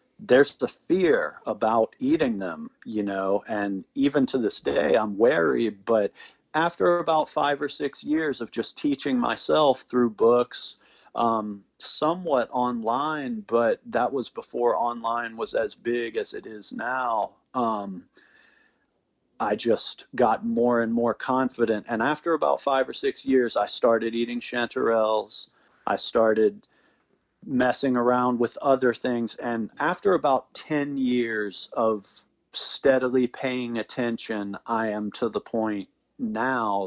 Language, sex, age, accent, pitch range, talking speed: English, male, 40-59, American, 110-145 Hz, 135 wpm